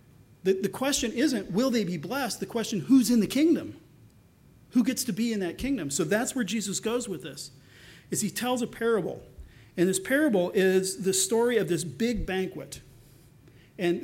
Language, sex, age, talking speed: English, male, 40-59, 185 wpm